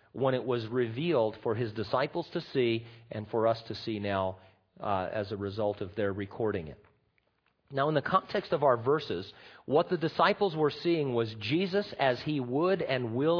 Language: English